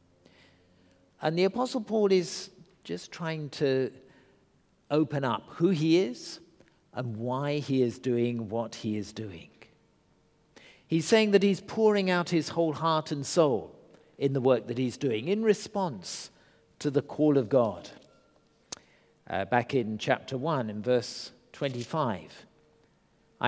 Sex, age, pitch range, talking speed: male, 50-69, 115-160 Hz, 140 wpm